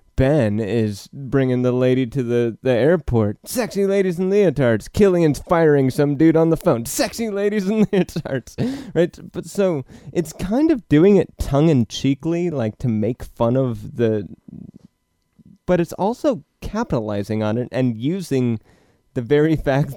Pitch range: 110-145 Hz